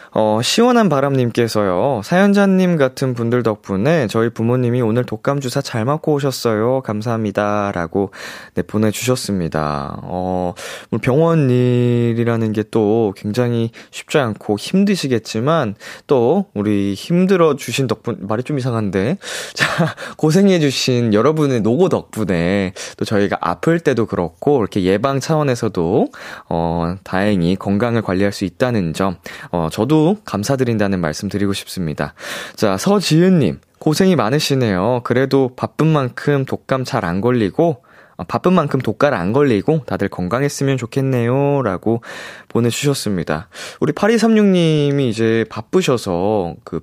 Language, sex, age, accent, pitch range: Korean, male, 20-39, native, 100-140 Hz